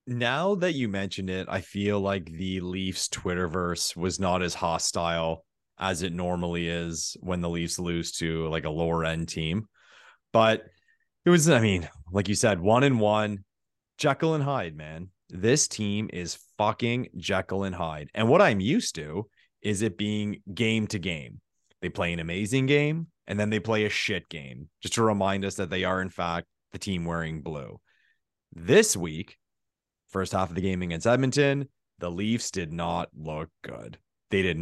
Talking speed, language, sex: 180 wpm, English, male